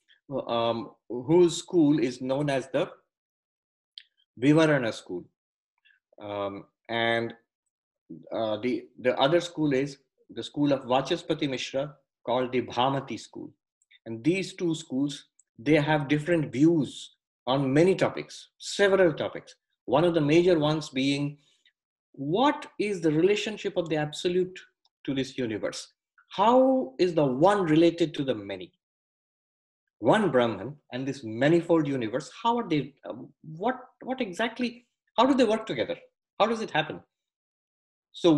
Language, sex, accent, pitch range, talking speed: English, male, Indian, 125-175 Hz, 135 wpm